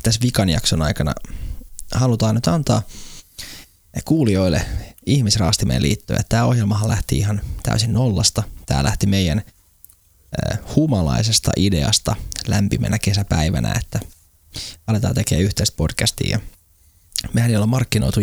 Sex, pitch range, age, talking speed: male, 90-110 Hz, 20-39, 105 wpm